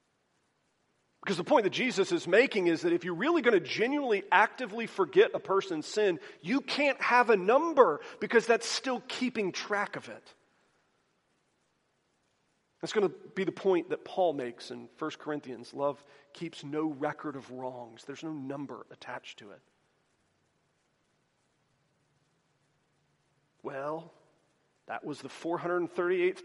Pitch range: 135-220 Hz